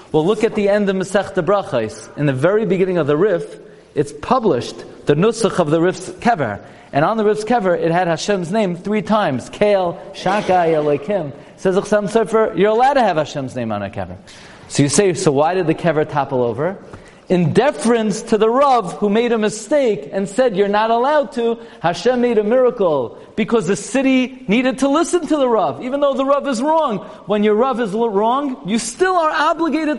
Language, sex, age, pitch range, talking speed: English, male, 40-59, 150-220 Hz, 200 wpm